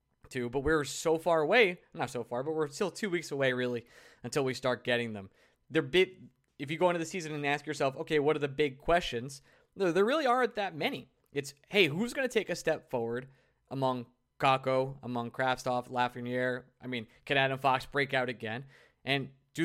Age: 20-39